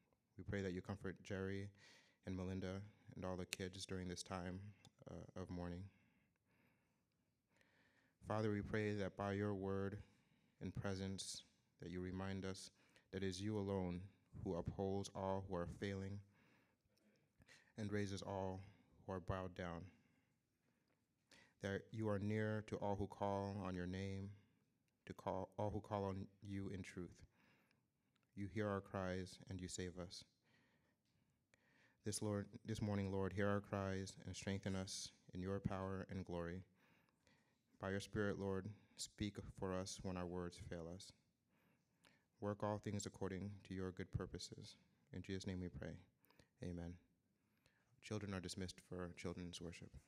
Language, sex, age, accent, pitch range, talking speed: English, male, 30-49, American, 95-100 Hz, 150 wpm